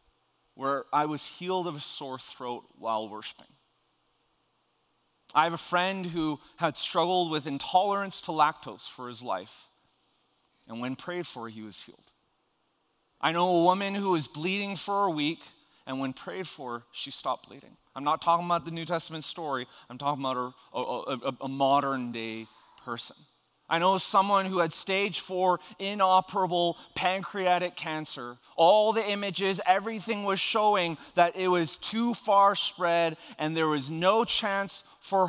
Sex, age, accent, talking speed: male, 30-49, American, 160 wpm